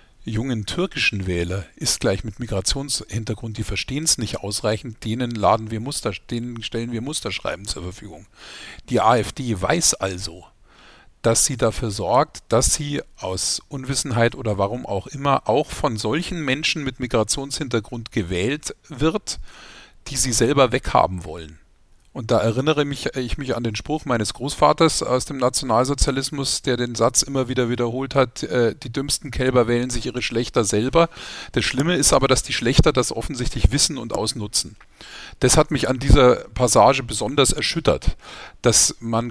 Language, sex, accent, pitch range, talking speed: German, male, German, 110-135 Hz, 155 wpm